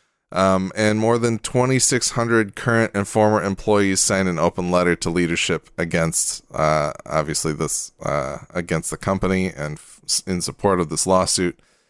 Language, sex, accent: English, male, American